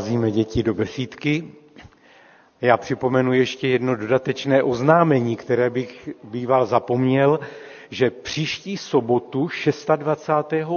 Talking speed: 95 wpm